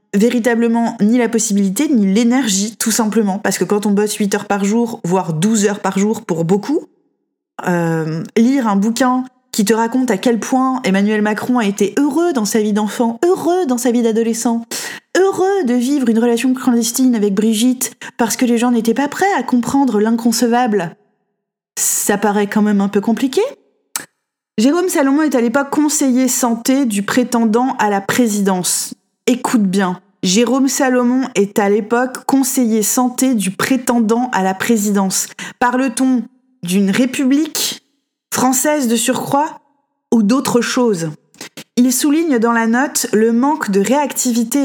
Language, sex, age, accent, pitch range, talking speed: French, female, 20-39, French, 210-260 Hz, 155 wpm